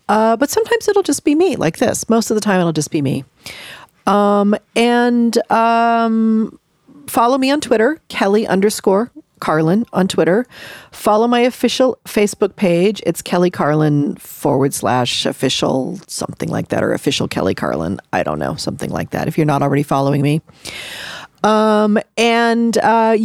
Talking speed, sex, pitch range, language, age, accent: 160 wpm, female, 180-235 Hz, English, 40-59, American